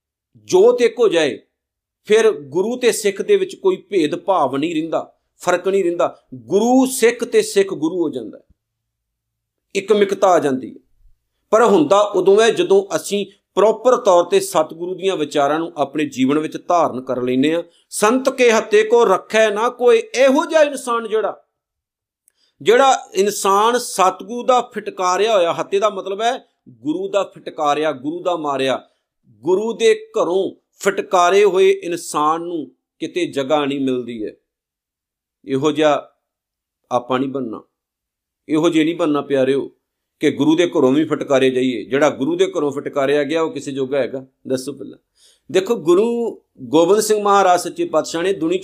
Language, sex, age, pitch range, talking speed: Punjabi, male, 50-69, 150-230 Hz, 135 wpm